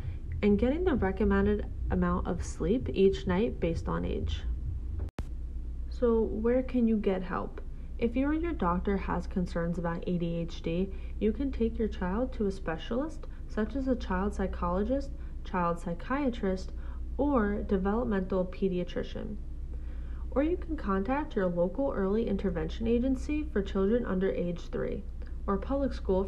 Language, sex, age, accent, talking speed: English, female, 30-49, American, 140 wpm